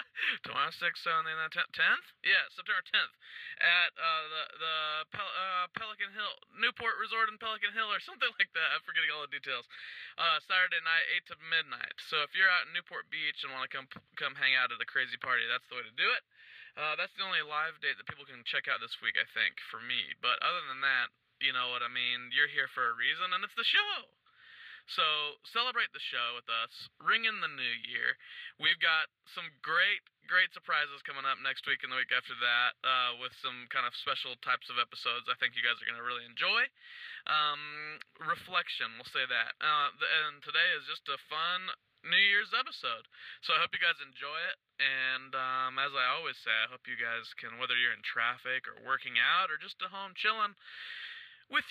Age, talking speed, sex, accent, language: 20-39, 215 wpm, male, American, English